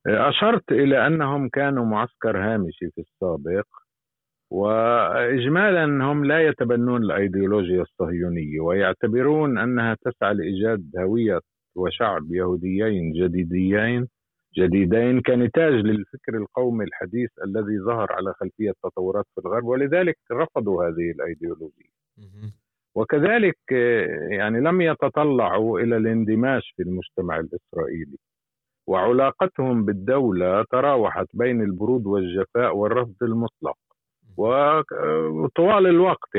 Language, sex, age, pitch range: Arabic, male, 50-69, 100-145 Hz